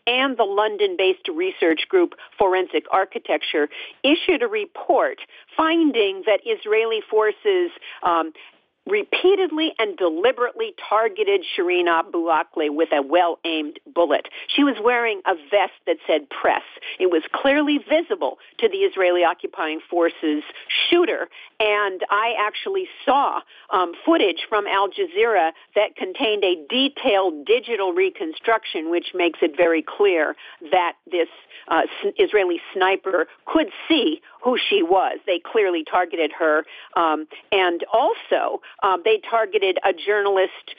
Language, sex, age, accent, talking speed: English, female, 50-69, American, 125 wpm